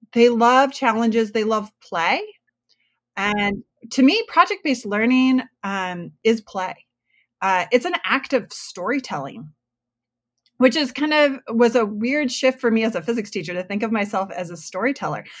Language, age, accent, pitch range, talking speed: English, 30-49, American, 205-255 Hz, 160 wpm